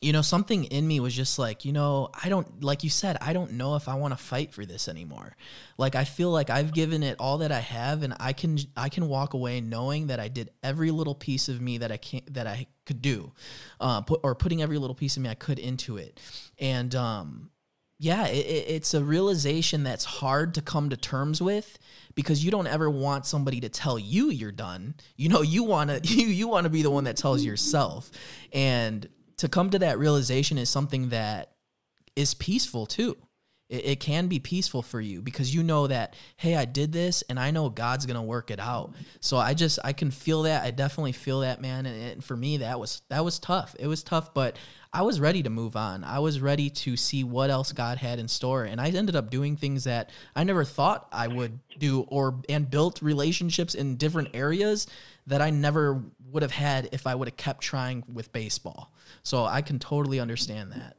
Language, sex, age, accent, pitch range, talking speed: English, male, 20-39, American, 125-155 Hz, 220 wpm